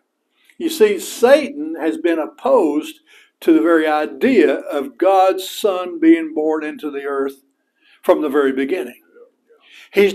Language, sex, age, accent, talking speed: English, male, 60-79, American, 135 wpm